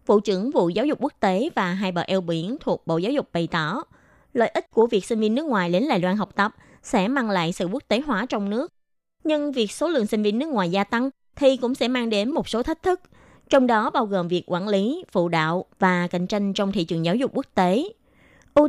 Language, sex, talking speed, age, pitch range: Vietnamese, female, 255 wpm, 20-39, 190-265 Hz